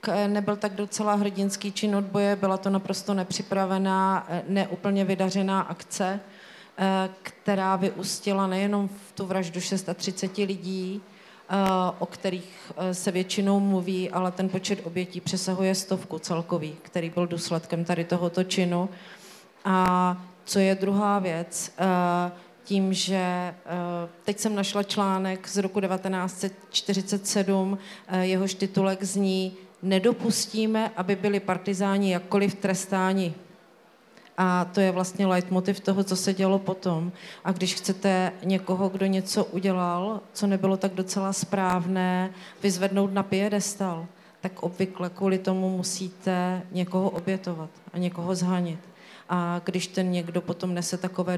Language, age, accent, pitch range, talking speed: Czech, 40-59, native, 180-195 Hz, 120 wpm